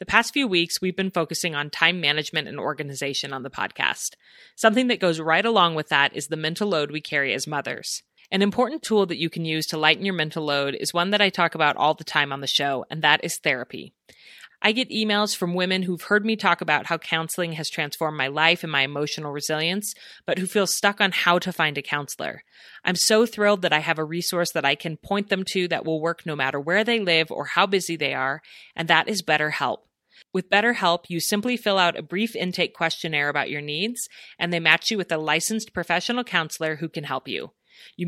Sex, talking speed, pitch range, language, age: female, 230 wpm, 155-195 Hz, English, 30-49